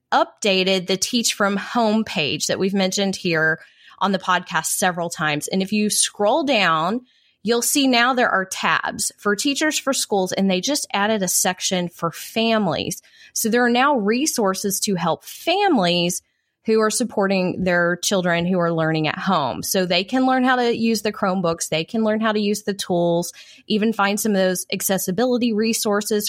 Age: 20-39